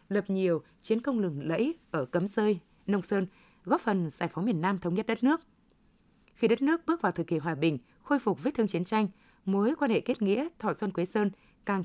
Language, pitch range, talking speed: Vietnamese, 180-235 Hz, 235 wpm